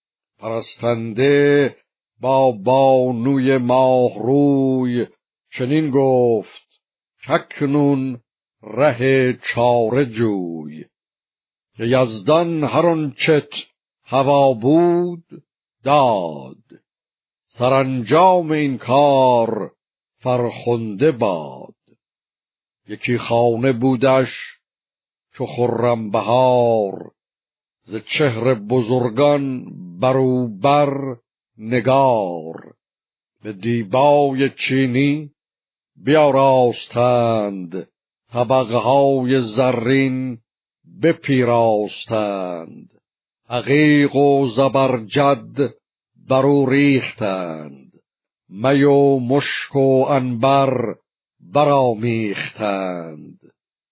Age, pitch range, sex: 60-79, 115-140 Hz, male